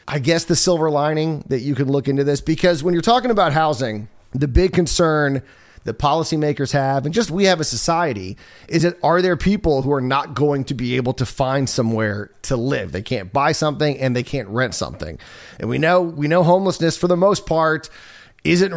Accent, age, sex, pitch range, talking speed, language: American, 30-49, male, 125-170 Hz, 210 wpm, English